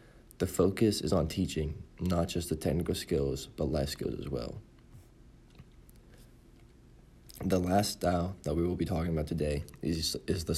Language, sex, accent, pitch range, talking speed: English, male, American, 80-95 Hz, 160 wpm